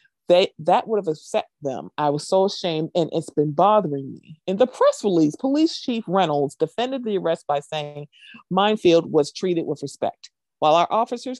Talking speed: 180 wpm